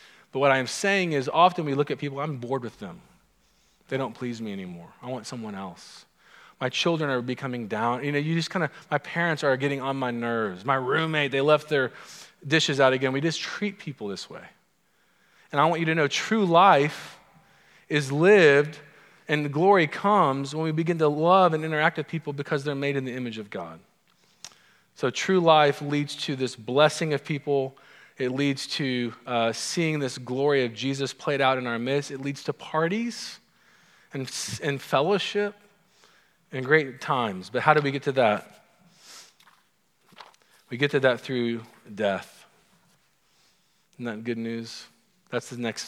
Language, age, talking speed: English, 40-59, 180 wpm